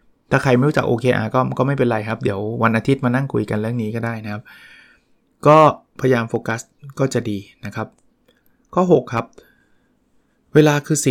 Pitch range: 115-150 Hz